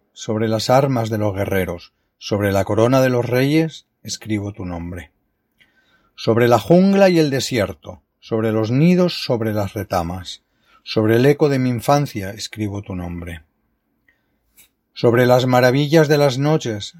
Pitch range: 105-135 Hz